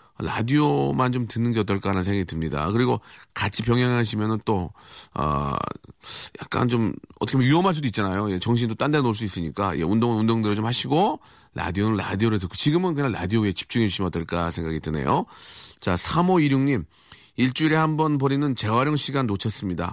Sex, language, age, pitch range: male, Korean, 40-59, 90-140 Hz